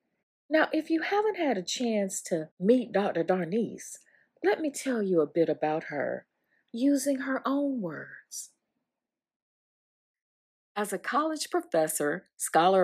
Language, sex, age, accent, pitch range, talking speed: English, female, 40-59, American, 165-270 Hz, 130 wpm